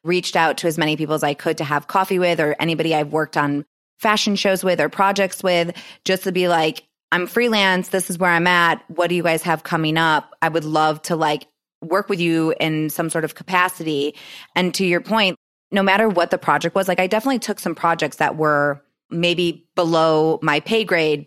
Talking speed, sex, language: 220 wpm, female, English